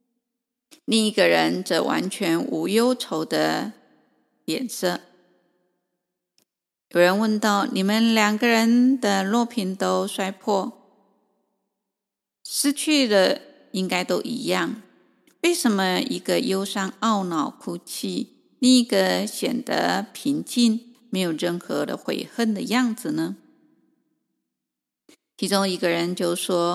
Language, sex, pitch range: Chinese, female, 185-245 Hz